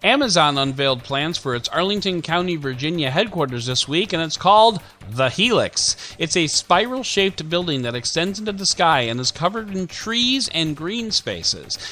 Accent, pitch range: American, 130-195 Hz